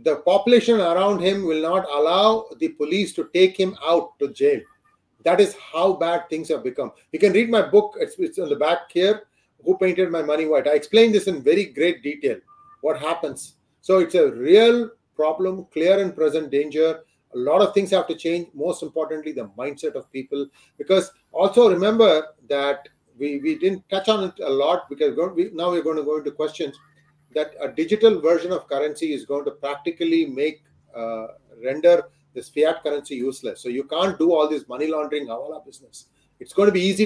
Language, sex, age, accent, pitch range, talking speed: English, male, 30-49, Indian, 150-205 Hz, 195 wpm